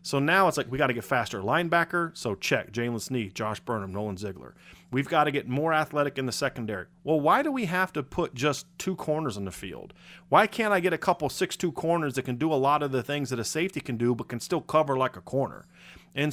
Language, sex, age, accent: English, male, 30-49, American